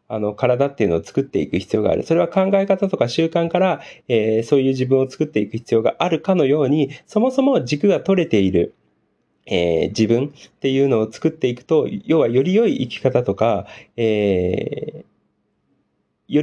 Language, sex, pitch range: Japanese, male, 120-170 Hz